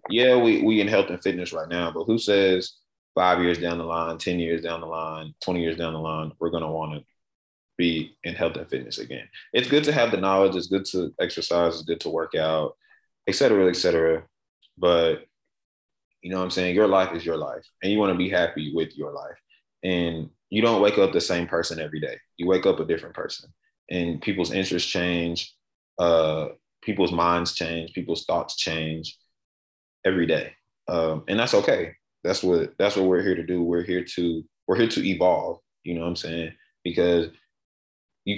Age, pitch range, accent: 20-39, 85-95 Hz, American